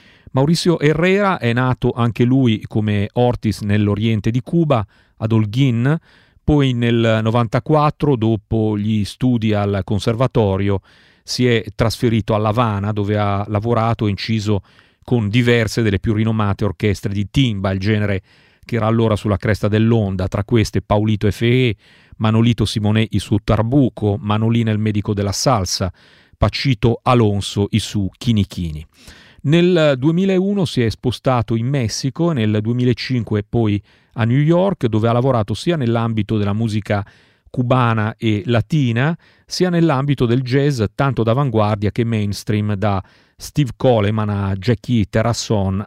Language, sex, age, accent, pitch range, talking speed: Italian, male, 40-59, native, 105-130 Hz, 135 wpm